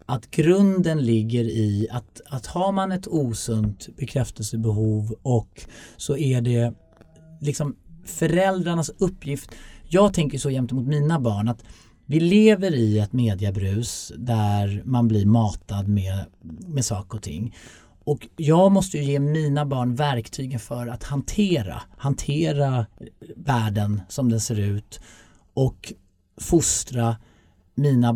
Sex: male